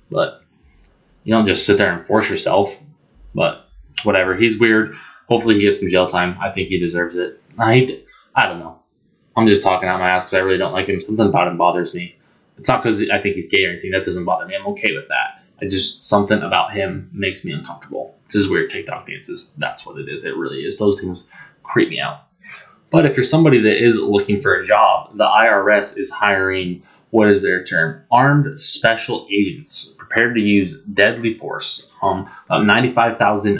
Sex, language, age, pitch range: male, English, 20-39, 95-120 Hz